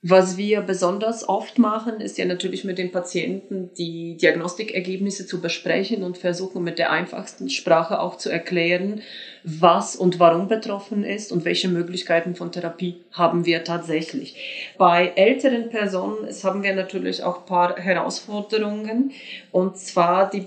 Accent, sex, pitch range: German, female, 175-195 Hz